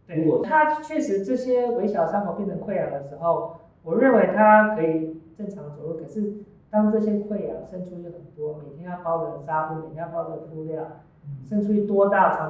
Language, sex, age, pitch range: Chinese, female, 20-39, 155-190 Hz